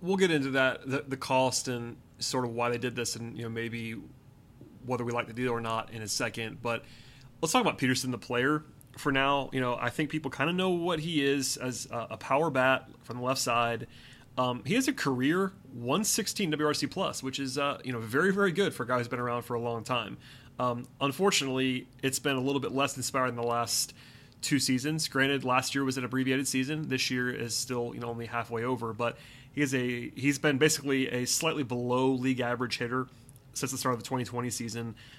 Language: English